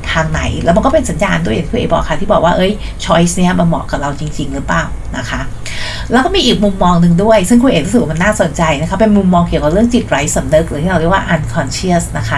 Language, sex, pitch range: Thai, female, 155-200 Hz